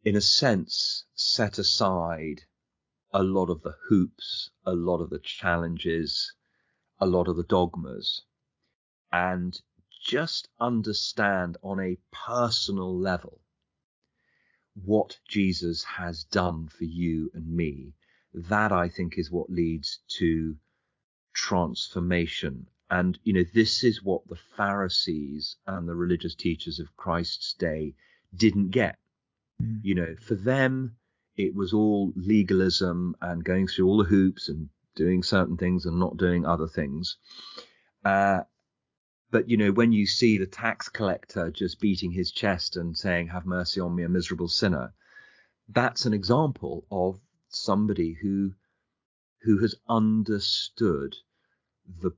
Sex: male